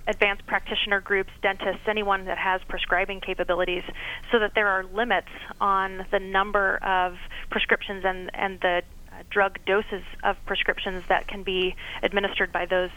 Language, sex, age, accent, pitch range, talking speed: English, female, 30-49, American, 190-220 Hz, 150 wpm